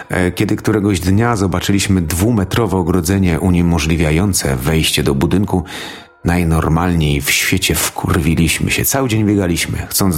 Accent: native